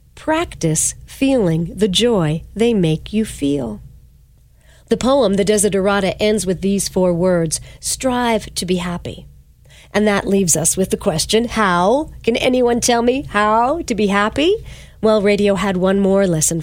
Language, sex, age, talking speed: English, female, 40-59, 155 wpm